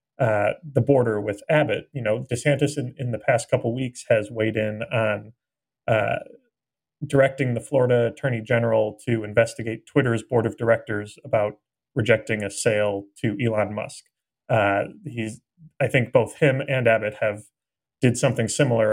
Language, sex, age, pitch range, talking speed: English, male, 30-49, 110-135 Hz, 155 wpm